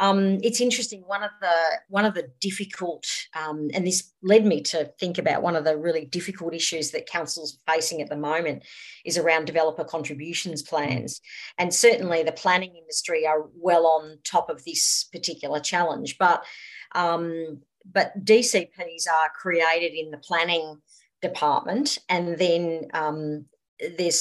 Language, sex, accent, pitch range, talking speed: English, female, Australian, 155-190 Hz, 145 wpm